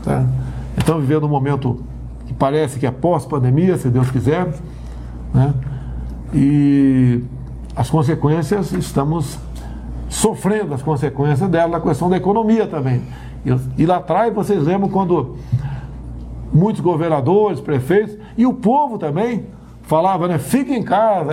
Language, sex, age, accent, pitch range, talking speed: Portuguese, male, 60-79, Brazilian, 135-200 Hz, 125 wpm